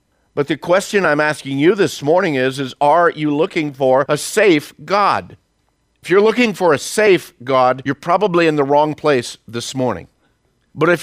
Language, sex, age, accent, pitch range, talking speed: English, male, 50-69, American, 125-165 Hz, 185 wpm